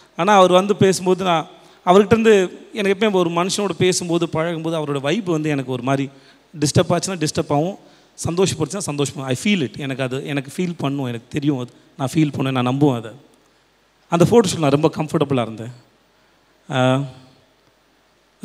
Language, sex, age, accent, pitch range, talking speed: Tamil, male, 30-49, native, 130-175 Hz, 155 wpm